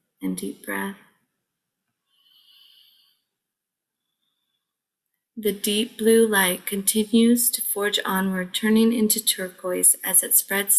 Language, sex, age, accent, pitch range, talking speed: English, female, 20-39, American, 195-235 Hz, 95 wpm